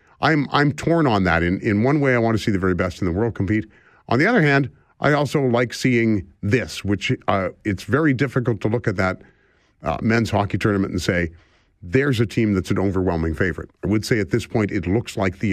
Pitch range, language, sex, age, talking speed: 95-130 Hz, English, male, 50-69, 235 wpm